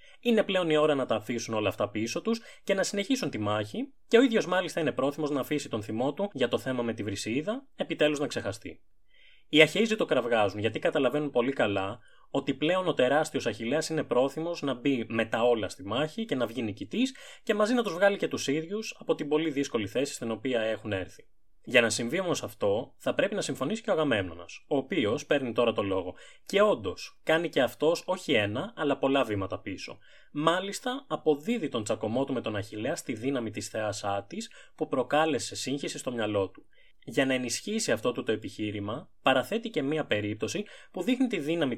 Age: 20-39